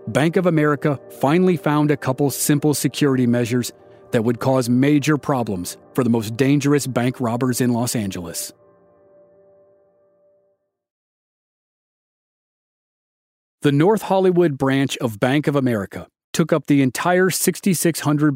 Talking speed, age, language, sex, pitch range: 120 wpm, 40-59, English, male, 125-160 Hz